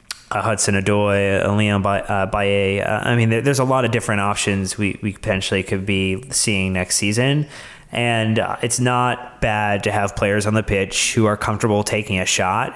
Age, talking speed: 30-49, 195 wpm